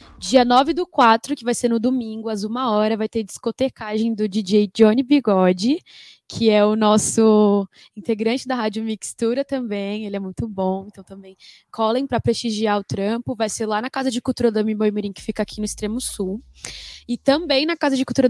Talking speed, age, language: 195 wpm, 10-29, Portuguese